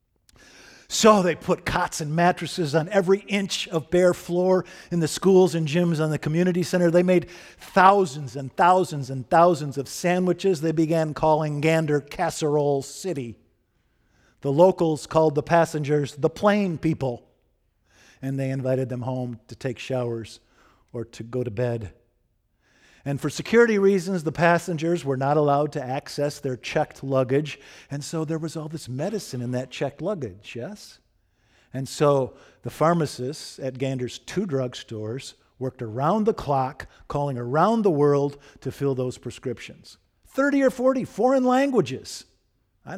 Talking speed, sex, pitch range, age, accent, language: 150 wpm, male, 130-170 Hz, 50-69, American, English